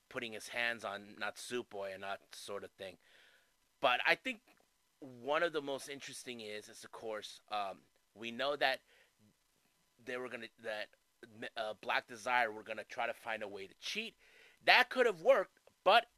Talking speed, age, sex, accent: 175 wpm, 30-49, male, American